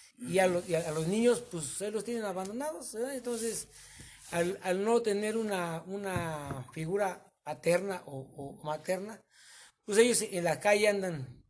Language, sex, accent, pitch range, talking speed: Spanish, male, Mexican, 145-195 Hz, 165 wpm